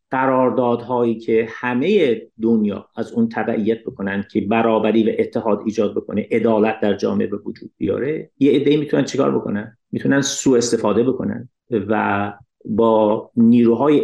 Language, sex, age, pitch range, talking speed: Persian, male, 50-69, 105-130 Hz, 135 wpm